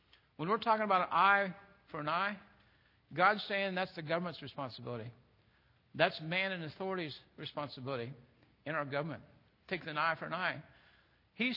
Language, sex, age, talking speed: English, male, 60-79, 155 wpm